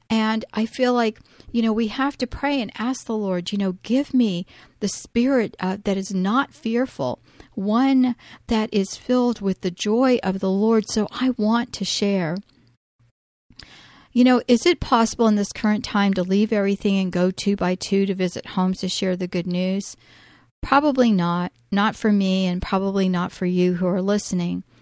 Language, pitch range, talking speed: English, 190-235 Hz, 190 wpm